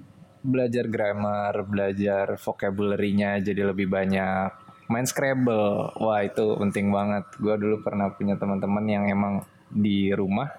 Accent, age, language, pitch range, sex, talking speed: native, 20-39, Indonesian, 100-115 Hz, male, 125 wpm